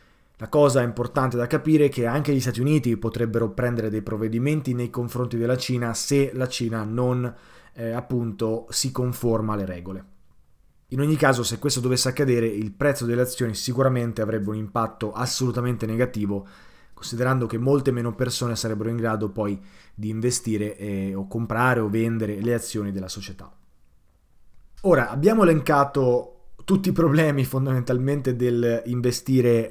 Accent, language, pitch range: native, Italian, 110-135 Hz